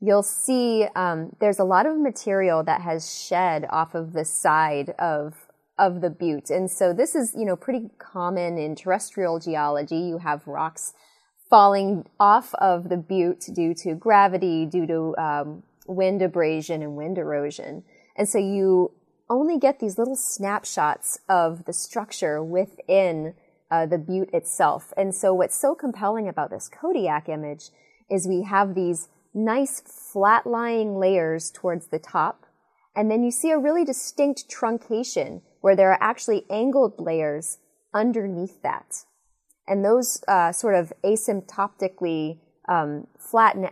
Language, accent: English, American